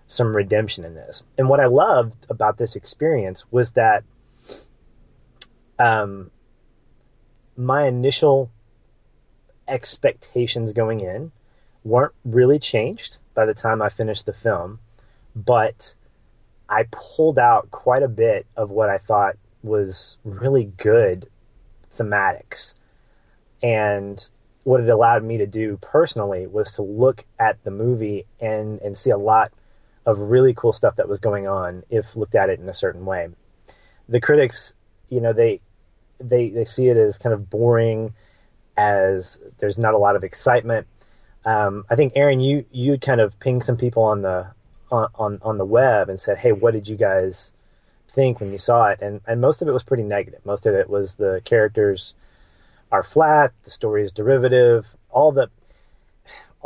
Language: English